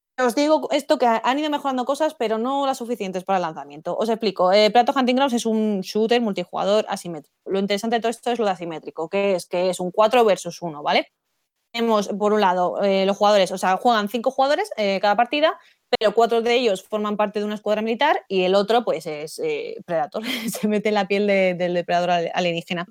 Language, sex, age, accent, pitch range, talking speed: English, female, 20-39, Spanish, 185-230 Hz, 225 wpm